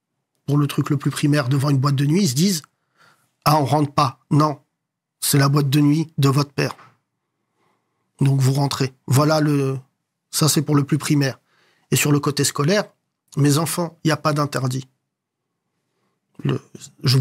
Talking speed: 190 wpm